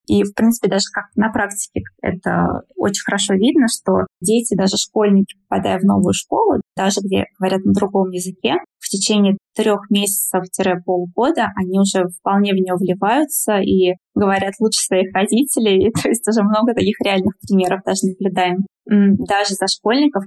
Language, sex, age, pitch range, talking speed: Russian, female, 20-39, 195-225 Hz, 160 wpm